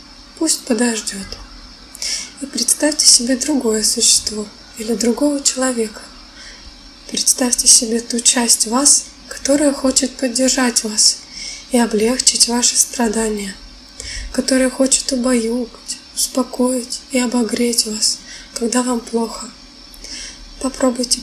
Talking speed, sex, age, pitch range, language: 95 wpm, female, 20-39, 235-265 Hz, Russian